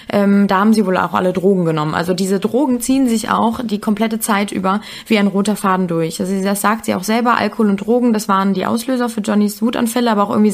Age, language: 20-39, German